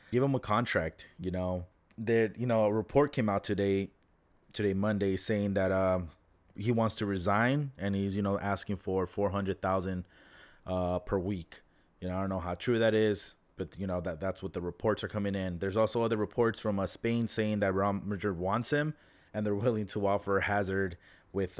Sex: male